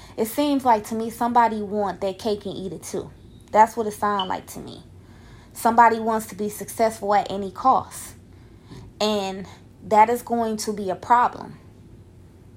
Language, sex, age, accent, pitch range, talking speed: English, female, 20-39, American, 170-225 Hz, 170 wpm